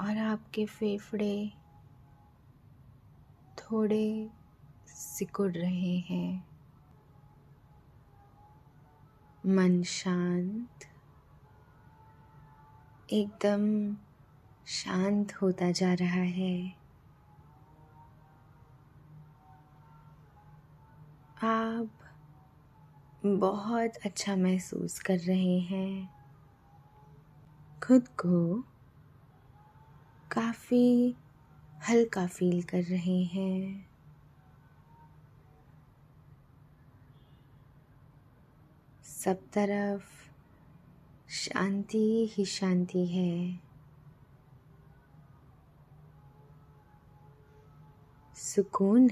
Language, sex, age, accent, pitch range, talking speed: Hindi, female, 20-39, native, 140-185 Hz, 45 wpm